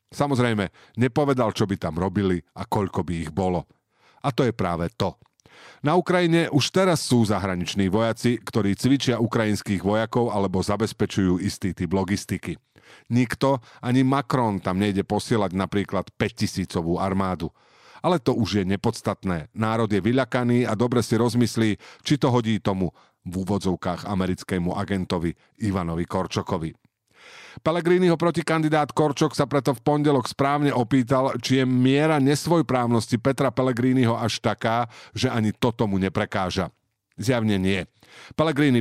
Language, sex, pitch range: Slovak, male, 95-135 Hz